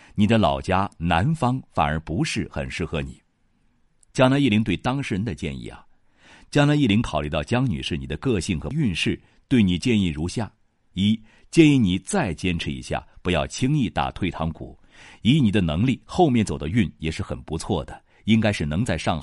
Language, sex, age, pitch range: Chinese, male, 50-69, 80-110 Hz